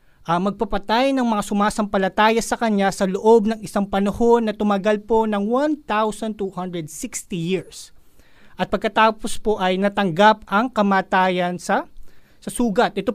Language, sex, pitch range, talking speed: Filipino, male, 195-240 Hz, 130 wpm